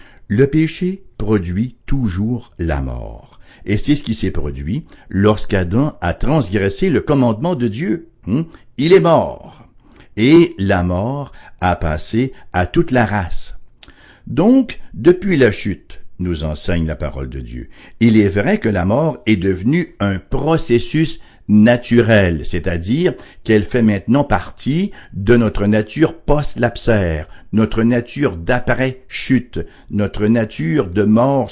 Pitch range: 95-130 Hz